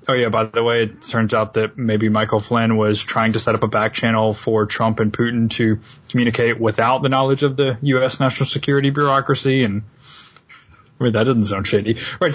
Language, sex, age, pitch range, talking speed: English, male, 20-39, 110-130 Hz, 210 wpm